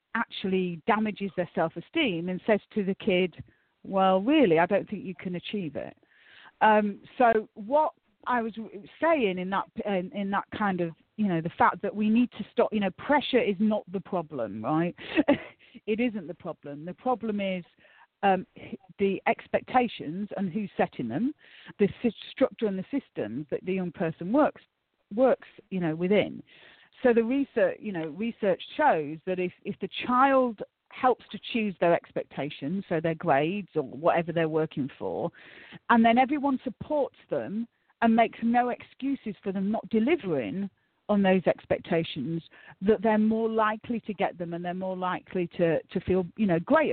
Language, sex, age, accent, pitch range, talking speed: English, female, 40-59, British, 180-230 Hz, 170 wpm